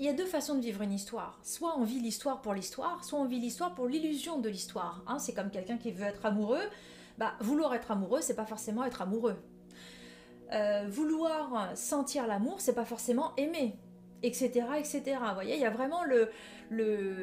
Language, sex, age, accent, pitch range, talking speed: French, female, 30-49, French, 210-270 Hz, 210 wpm